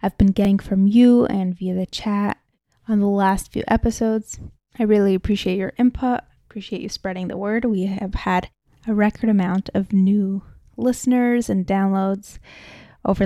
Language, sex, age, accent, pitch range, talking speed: English, female, 20-39, American, 195-225 Hz, 165 wpm